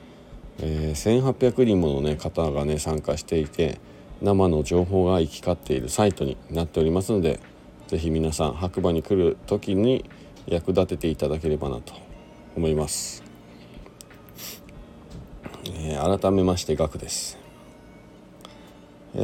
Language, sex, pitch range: Japanese, male, 75-100 Hz